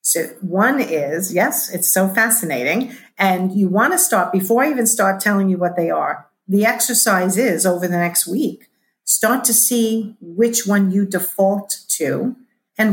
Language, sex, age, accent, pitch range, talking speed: English, female, 50-69, American, 175-225 Hz, 170 wpm